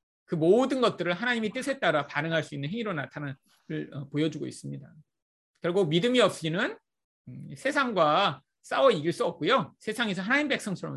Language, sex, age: Korean, male, 30-49